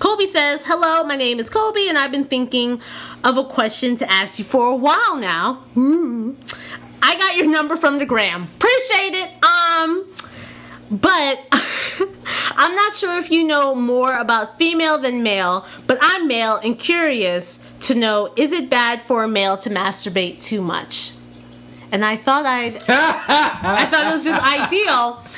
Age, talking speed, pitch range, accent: 30-49, 165 wpm, 215-330 Hz, American